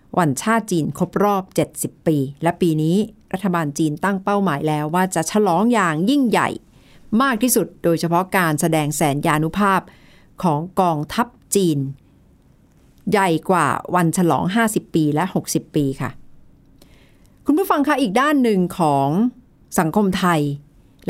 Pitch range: 160-215 Hz